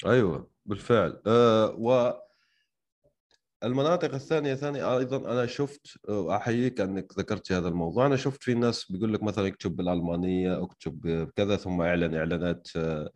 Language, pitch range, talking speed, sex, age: Arabic, 90-125 Hz, 130 wpm, male, 30-49